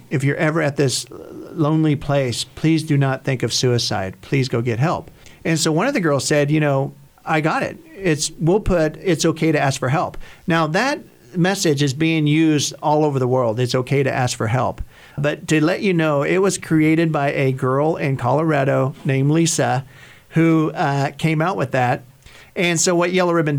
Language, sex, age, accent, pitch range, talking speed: English, male, 50-69, American, 130-160 Hz, 205 wpm